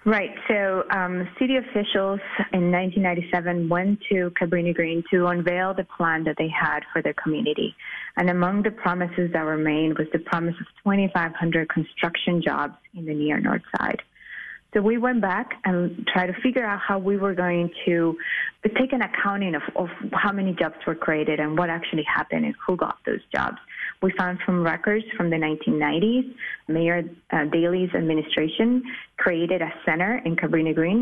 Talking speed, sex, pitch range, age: 170 wpm, female, 165-195 Hz, 20-39